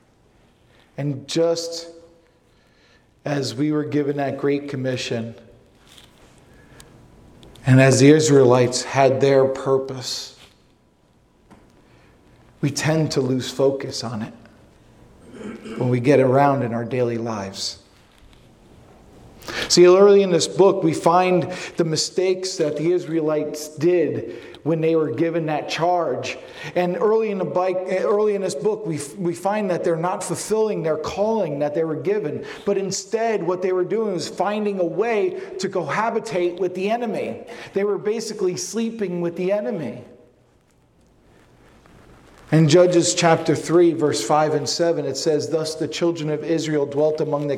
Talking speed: 140 wpm